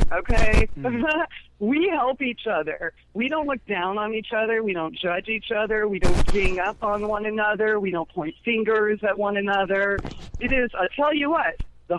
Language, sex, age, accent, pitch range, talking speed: English, female, 40-59, American, 180-230 Hz, 190 wpm